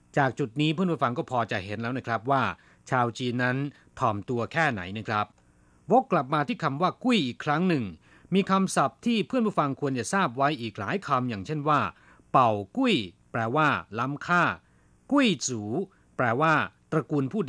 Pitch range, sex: 115-180 Hz, male